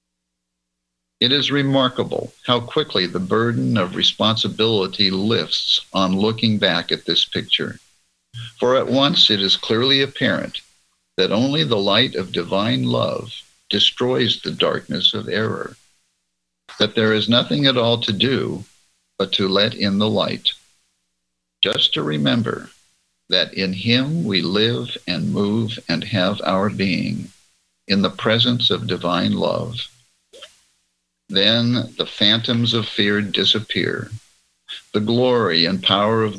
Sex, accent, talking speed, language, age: male, American, 130 wpm, English, 60-79